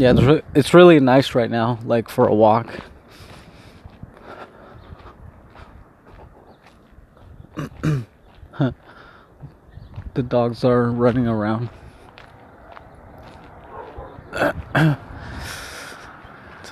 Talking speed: 55 wpm